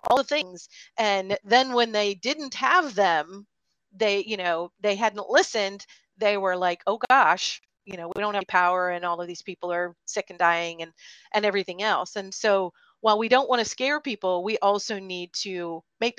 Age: 40-59